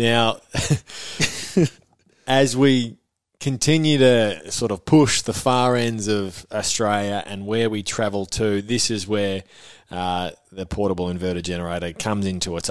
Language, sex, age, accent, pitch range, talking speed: English, male, 20-39, Australian, 90-110 Hz, 135 wpm